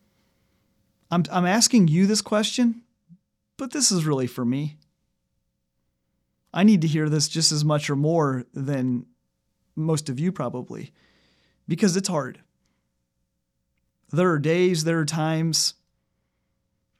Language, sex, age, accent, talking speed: English, male, 30-49, American, 125 wpm